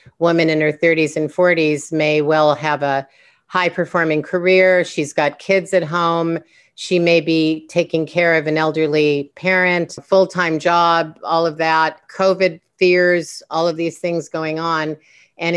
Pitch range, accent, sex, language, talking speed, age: 155-175 Hz, American, female, English, 160 wpm, 40-59